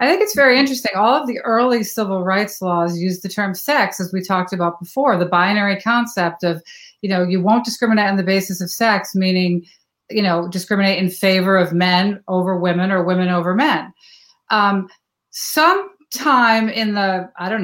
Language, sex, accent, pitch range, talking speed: English, female, American, 185-230 Hz, 185 wpm